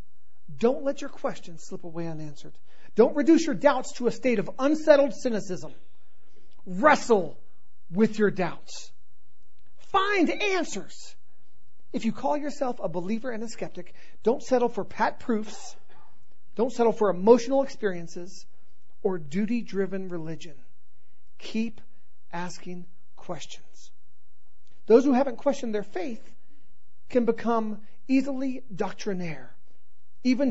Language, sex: English, male